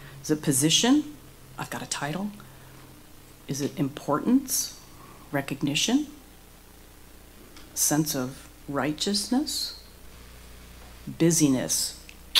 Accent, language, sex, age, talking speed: American, English, female, 40-59, 75 wpm